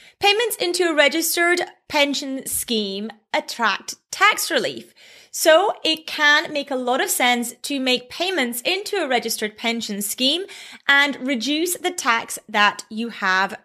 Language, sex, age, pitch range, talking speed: English, female, 30-49, 245-335 Hz, 140 wpm